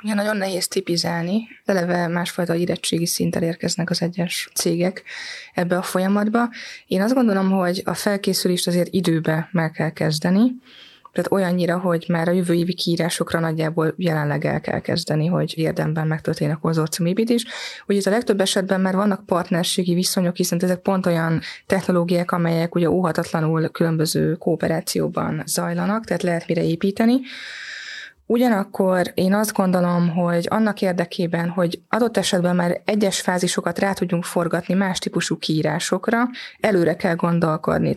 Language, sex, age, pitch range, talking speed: Hungarian, female, 20-39, 170-195 Hz, 140 wpm